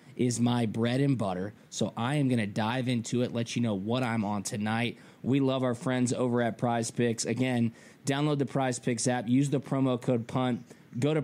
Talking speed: 220 wpm